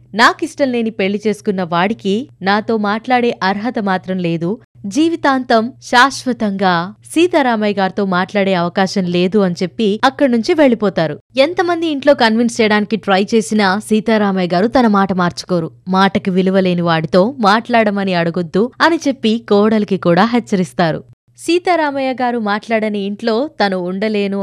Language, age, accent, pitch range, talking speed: Telugu, 20-39, native, 190-255 Hz, 115 wpm